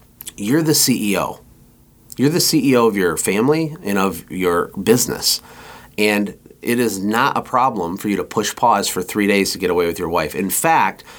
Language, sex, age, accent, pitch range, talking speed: English, male, 30-49, American, 100-125 Hz, 190 wpm